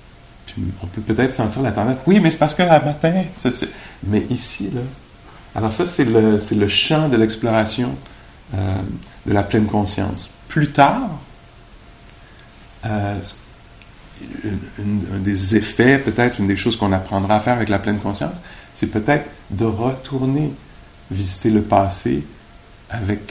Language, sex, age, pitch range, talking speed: English, male, 50-69, 100-125 Hz, 155 wpm